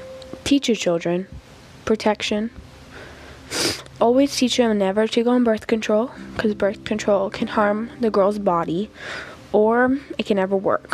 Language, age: Czech, 10-29